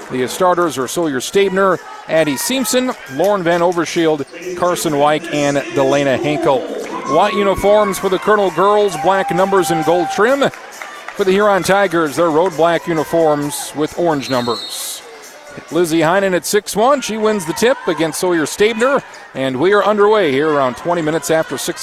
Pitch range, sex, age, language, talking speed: 155-200 Hz, male, 40-59, English, 160 wpm